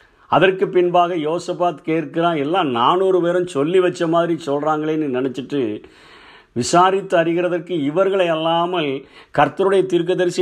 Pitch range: 145-175 Hz